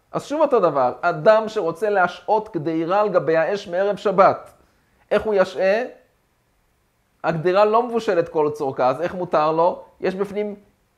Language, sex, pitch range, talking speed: Hebrew, male, 155-200 Hz, 140 wpm